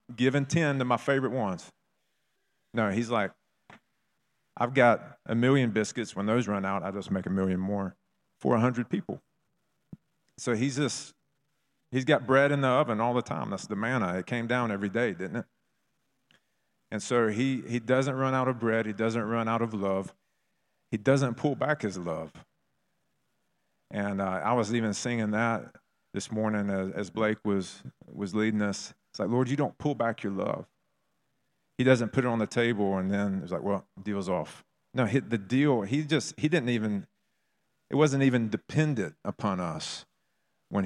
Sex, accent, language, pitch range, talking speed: male, American, Russian, 105-130 Hz, 180 wpm